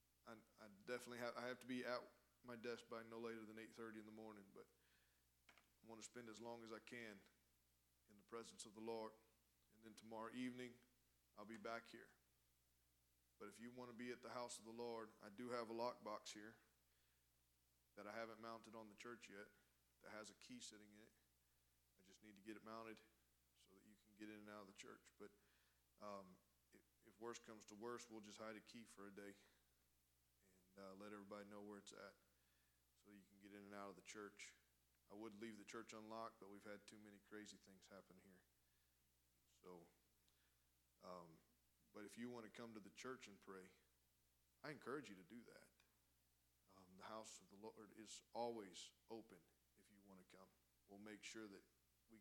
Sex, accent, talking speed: male, American, 205 wpm